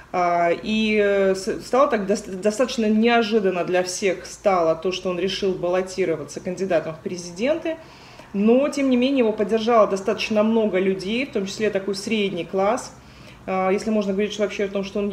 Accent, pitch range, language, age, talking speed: native, 180-220 Hz, Russian, 30-49, 155 wpm